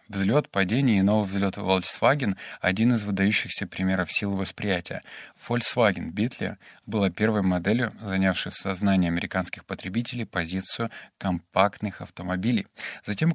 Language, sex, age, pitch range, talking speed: Russian, male, 20-39, 95-115 Hz, 115 wpm